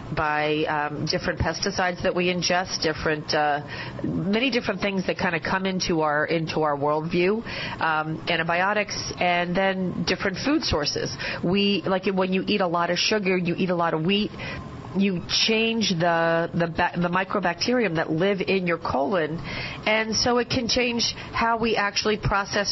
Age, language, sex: 40-59, English, female